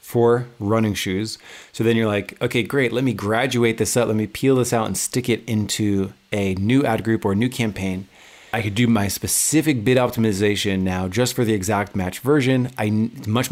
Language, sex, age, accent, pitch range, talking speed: English, male, 30-49, American, 100-120 Hz, 210 wpm